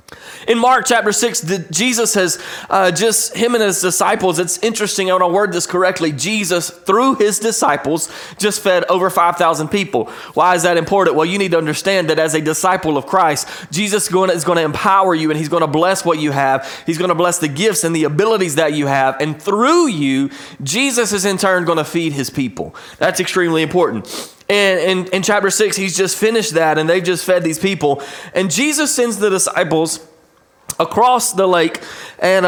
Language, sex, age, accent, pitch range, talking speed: English, male, 20-39, American, 160-205 Hz, 200 wpm